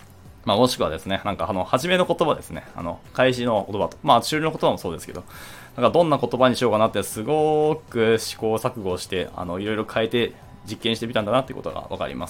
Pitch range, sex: 90-125 Hz, male